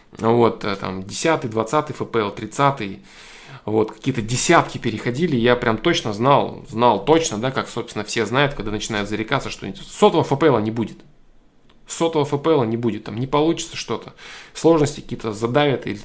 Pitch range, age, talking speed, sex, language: 110-145 Hz, 20-39, 155 wpm, male, Russian